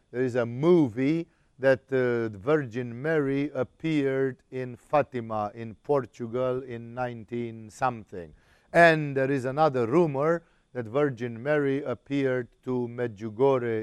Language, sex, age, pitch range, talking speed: English, male, 50-69, 110-140 Hz, 115 wpm